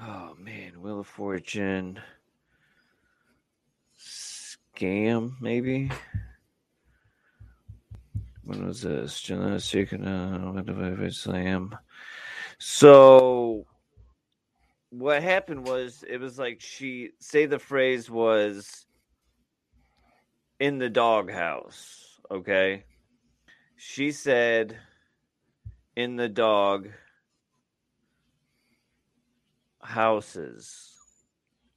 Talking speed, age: 60 wpm, 30-49